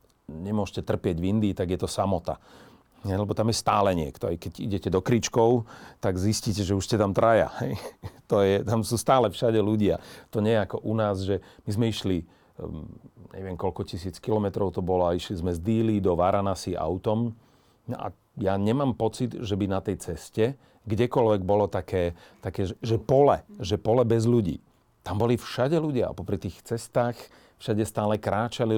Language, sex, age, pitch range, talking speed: Slovak, male, 40-59, 95-115 Hz, 180 wpm